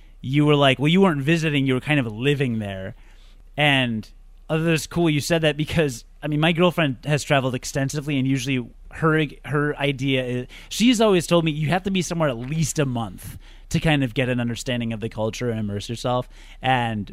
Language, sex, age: English, male, 30-49